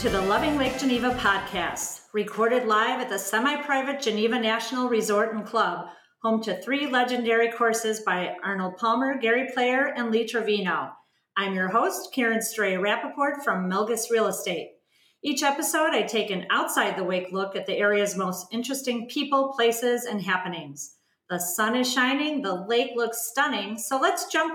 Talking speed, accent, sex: 160 wpm, American, female